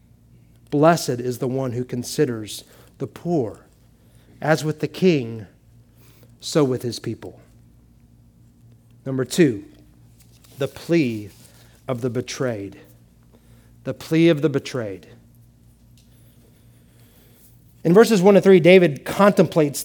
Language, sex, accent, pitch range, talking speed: English, male, American, 125-185 Hz, 105 wpm